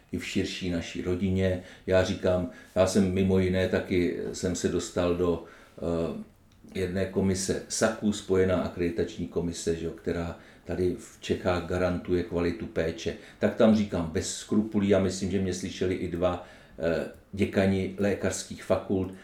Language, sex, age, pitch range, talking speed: Czech, male, 50-69, 90-115 Hz, 145 wpm